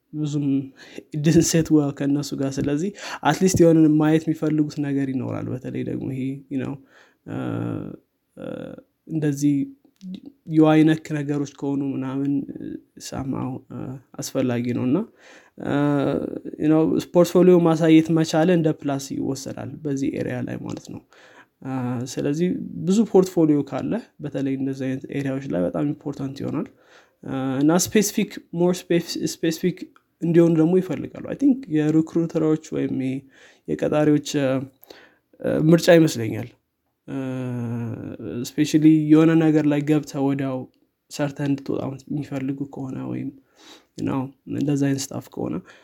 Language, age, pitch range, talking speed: Amharic, 20-39, 135-160 Hz, 100 wpm